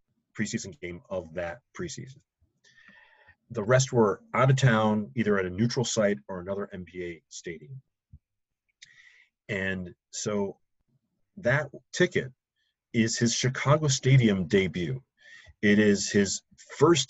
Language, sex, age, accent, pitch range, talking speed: English, male, 40-59, American, 100-130 Hz, 115 wpm